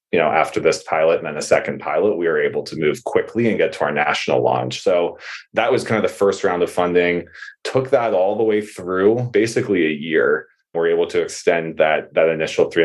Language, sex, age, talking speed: English, male, 20-39, 230 wpm